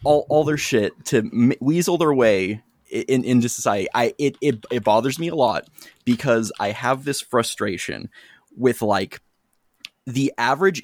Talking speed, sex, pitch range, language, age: 155 wpm, male, 115-145 Hz, English, 20-39